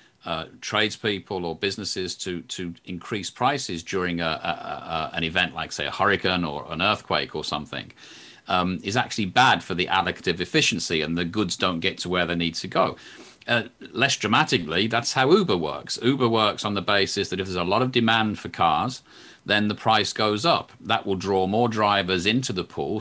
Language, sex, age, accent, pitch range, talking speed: English, male, 40-59, British, 90-120 Hz, 200 wpm